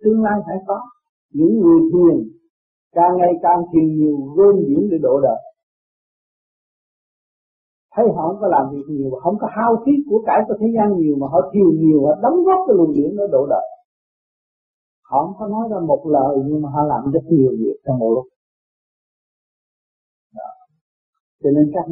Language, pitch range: Vietnamese, 160-230 Hz